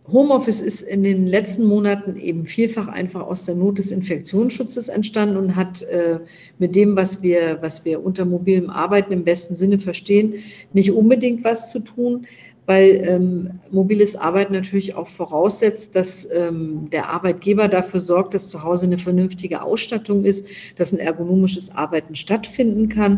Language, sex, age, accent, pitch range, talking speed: German, female, 50-69, German, 190-225 Hz, 160 wpm